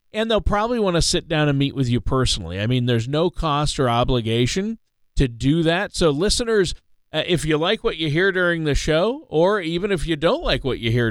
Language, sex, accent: English, male, American